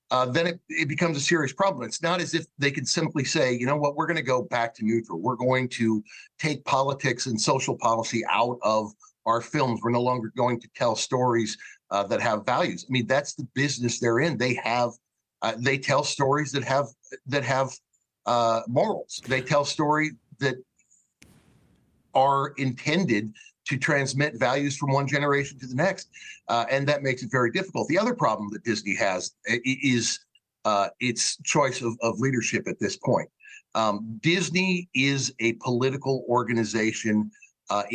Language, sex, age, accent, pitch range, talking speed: English, male, 50-69, American, 120-145 Hz, 180 wpm